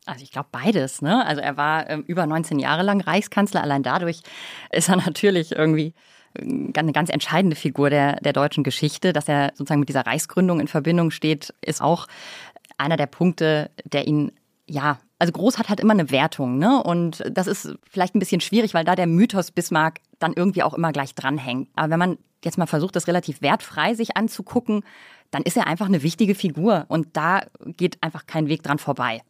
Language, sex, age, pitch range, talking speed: German, female, 30-49, 150-180 Hz, 205 wpm